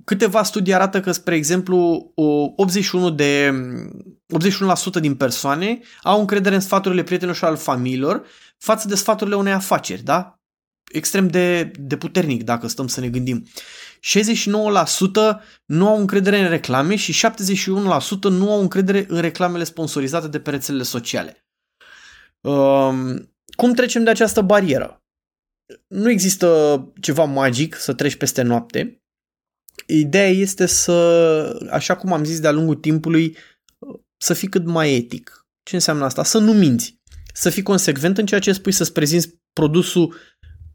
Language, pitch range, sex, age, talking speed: Romanian, 145-195 Hz, male, 20-39, 145 wpm